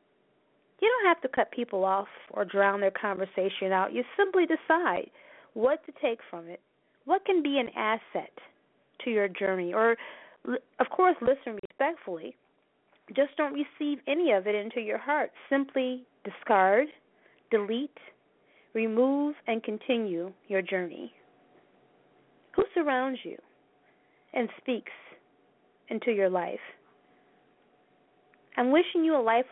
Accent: American